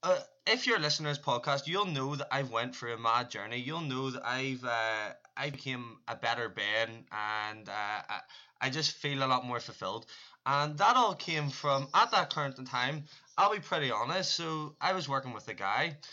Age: 20-39